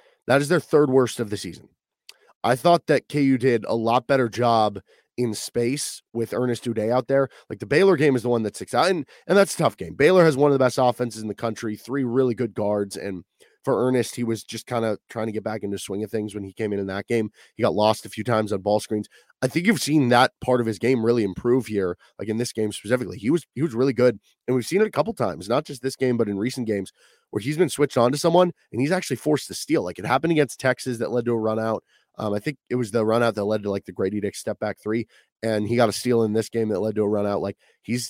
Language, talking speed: English, 285 wpm